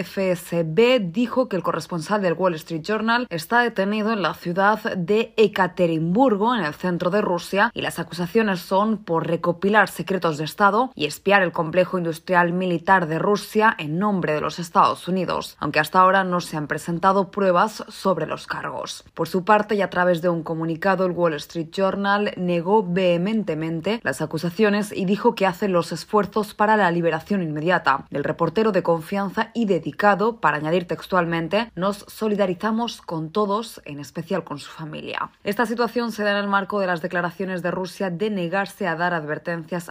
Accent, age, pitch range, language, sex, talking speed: Spanish, 20-39, 165-205 Hz, Spanish, female, 175 wpm